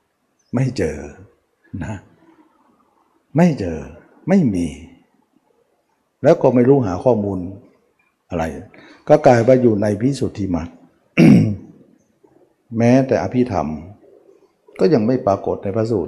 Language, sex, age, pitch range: Thai, male, 60-79, 95-125 Hz